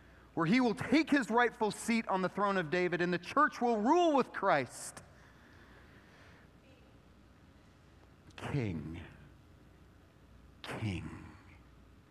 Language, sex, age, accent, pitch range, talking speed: English, male, 30-49, American, 135-200 Hz, 105 wpm